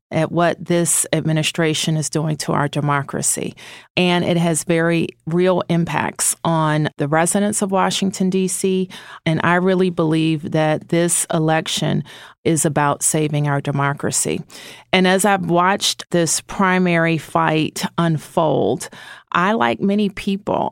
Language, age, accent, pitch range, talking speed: English, 40-59, American, 160-195 Hz, 130 wpm